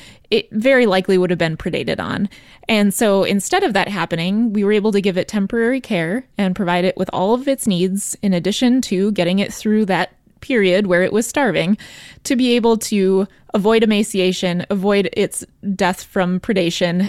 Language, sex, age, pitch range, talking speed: English, female, 20-39, 185-240 Hz, 185 wpm